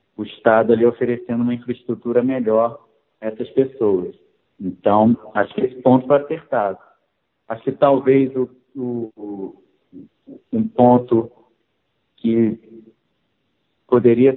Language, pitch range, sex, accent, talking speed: Portuguese, 110-135 Hz, male, Brazilian, 110 wpm